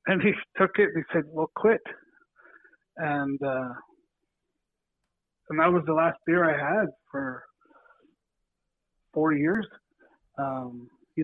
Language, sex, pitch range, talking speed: English, male, 145-190 Hz, 130 wpm